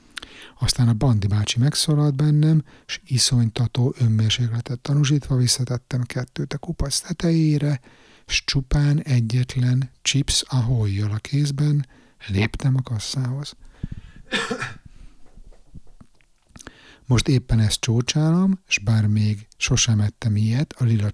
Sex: male